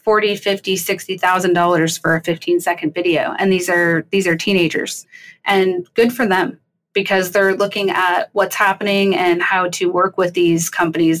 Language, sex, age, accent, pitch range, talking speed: English, female, 20-39, American, 175-200 Hz, 175 wpm